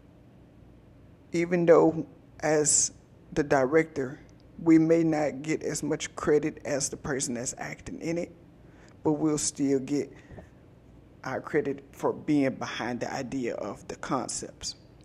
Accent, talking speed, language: American, 130 wpm, English